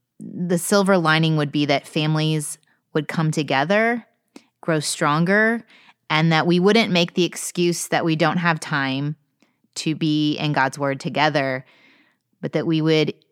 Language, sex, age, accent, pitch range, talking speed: English, female, 20-39, American, 145-185 Hz, 155 wpm